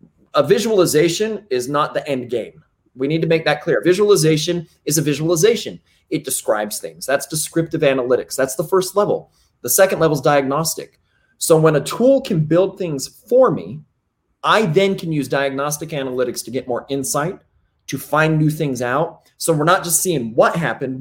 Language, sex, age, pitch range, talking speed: English, male, 30-49, 135-175 Hz, 180 wpm